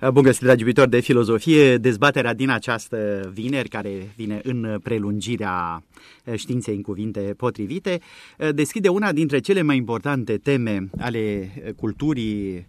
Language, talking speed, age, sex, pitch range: Romanian, 125 wpm, 30-49, male, 110-150 Hz